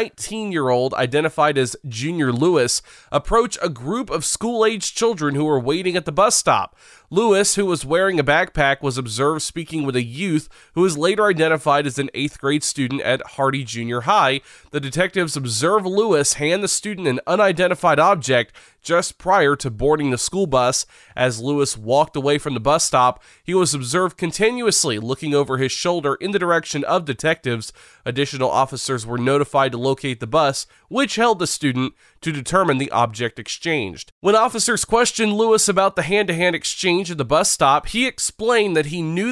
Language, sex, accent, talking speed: English, male, American, 175 wpm